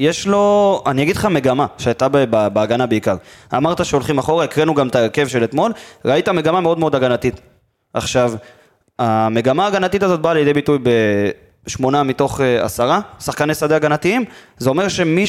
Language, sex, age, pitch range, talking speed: Hebrew, male, 20-39, 120-165 Hz, 155 wpm